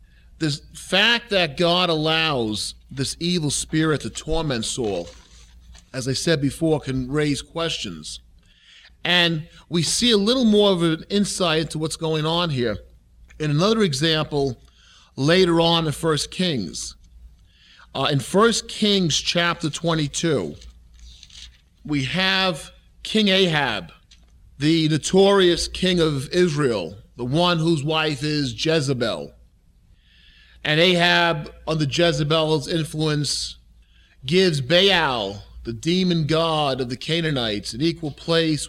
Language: English